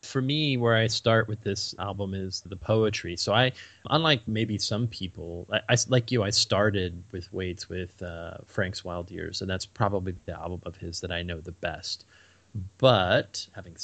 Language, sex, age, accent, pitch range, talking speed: English, male, 30-49, American, 95-110 Hz, 190 wpm